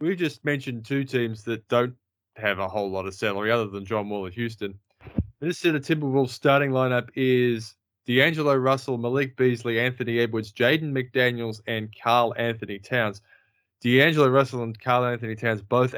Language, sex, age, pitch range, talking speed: English, male, 20-39, 110-140 Hz, 175 wpm